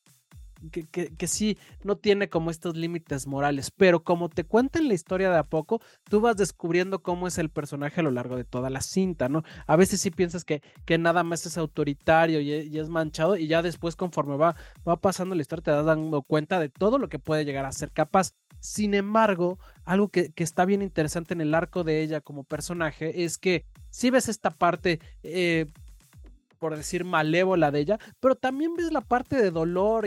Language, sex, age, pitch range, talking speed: Spanish, male, 30-49, 160-200 Hz, 210 wpm